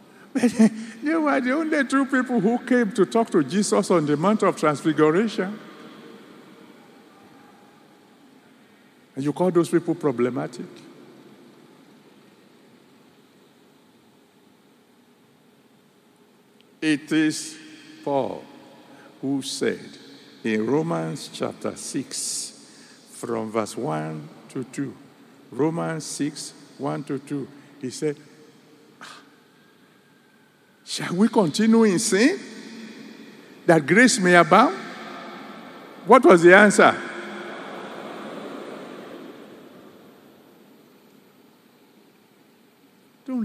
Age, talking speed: 60-79, 80 wpm